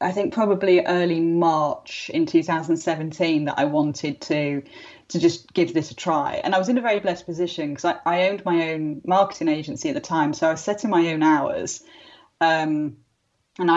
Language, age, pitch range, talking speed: English, 30-49, 155-185 Hz, 195 wpm